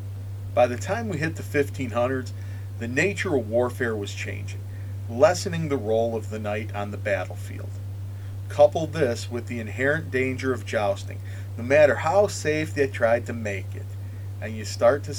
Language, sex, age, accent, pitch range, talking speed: English, male, 40-59, American, 100-115 Hz, 170 wpm